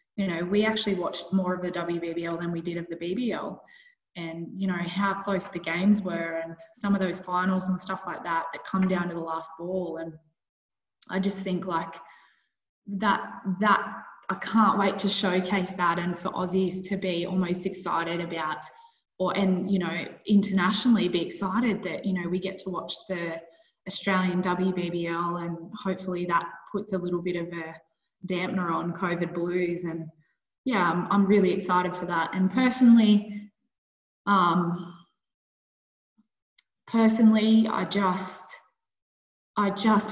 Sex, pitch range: female, 175-200 Hz